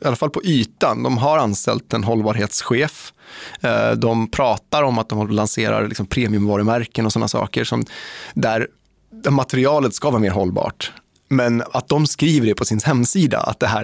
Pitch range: 105-135 Hz